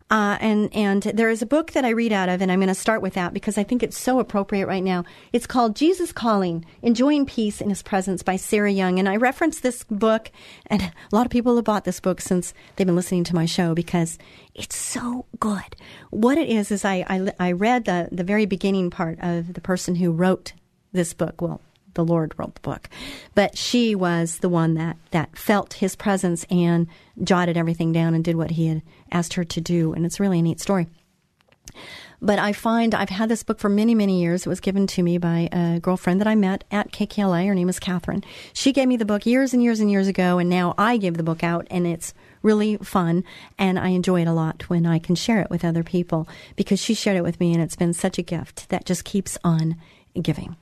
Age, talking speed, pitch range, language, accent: 40-59, 235 wpm, 175-215 Hz, English, American